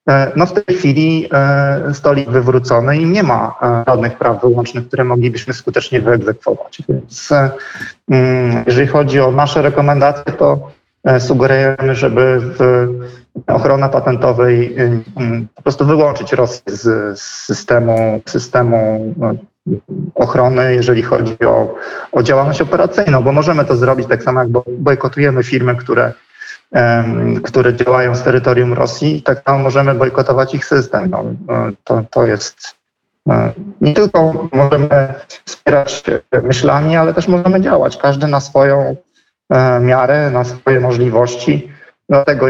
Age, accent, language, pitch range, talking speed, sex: 40-59, native, Polish, 120-140 Hz, 125 wpm, male